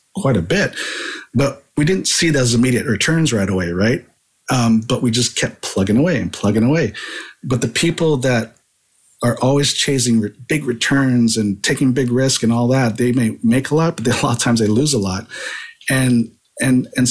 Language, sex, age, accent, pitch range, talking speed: English, male, 50-69, American, 110-130 Hz, 200 wpm